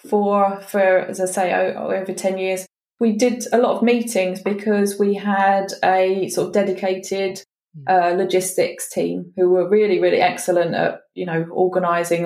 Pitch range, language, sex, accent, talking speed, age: 180-205 Hz, English, female, British, 160 wpm, 20-39